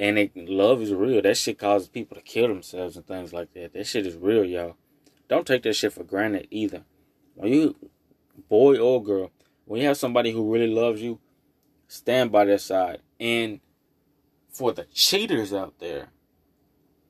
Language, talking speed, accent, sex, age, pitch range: English, 175 wpm, American, male, 20-39, 100-120 Hz